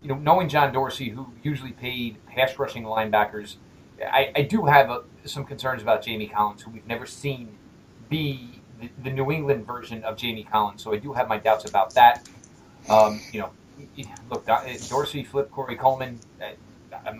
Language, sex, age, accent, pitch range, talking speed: English, male, 30-49, American, 115-145 Hz, 180 wpm